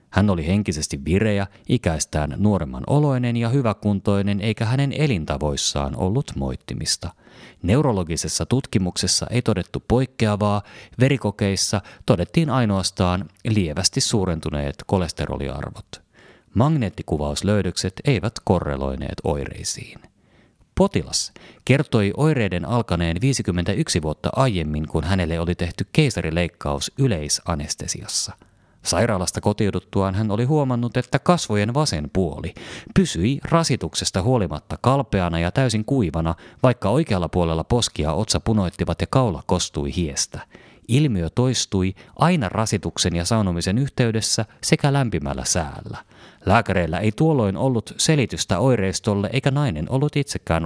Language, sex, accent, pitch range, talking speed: Finnish, male, native, 85-120 Hz, 105 wpm